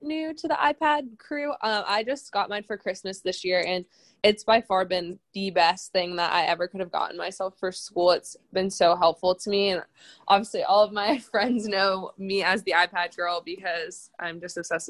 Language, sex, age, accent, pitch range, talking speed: English, female, 20-39, American, 180-210 Hz, 215 wpm